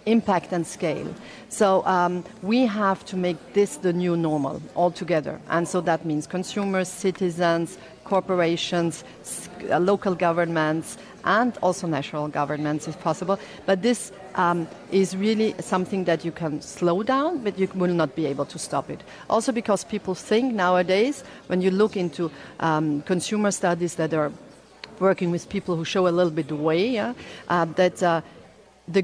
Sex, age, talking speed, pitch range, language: female, 40-59, 165 wpm, 160-195 Hz, English